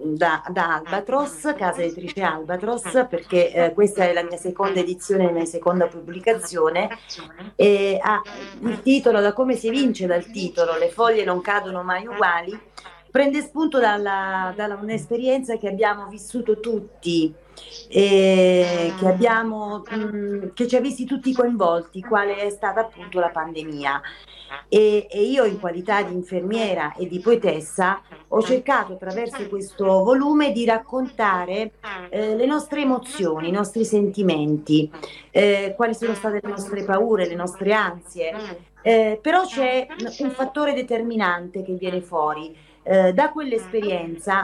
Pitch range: 180-235 Hz